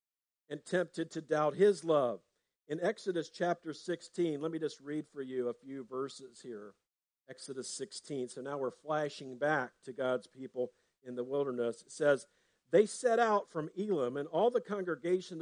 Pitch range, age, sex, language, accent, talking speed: 140-215 Hz, 50-69, male, English, American, 170 wpm